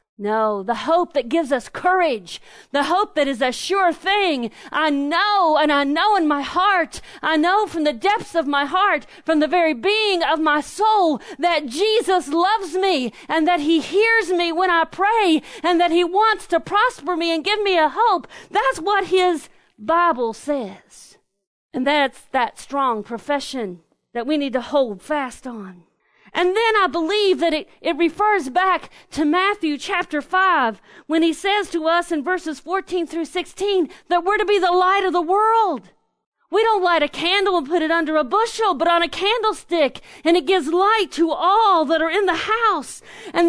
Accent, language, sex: American, English, female